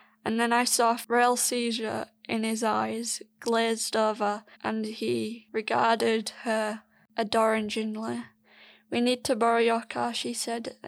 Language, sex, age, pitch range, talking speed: English, female, 20-39, 220-235 Hz, 140 wpm